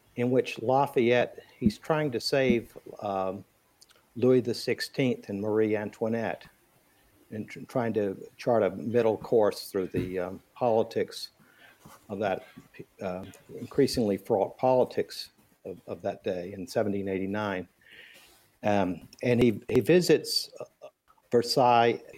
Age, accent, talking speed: 50-69, American, 120 wpm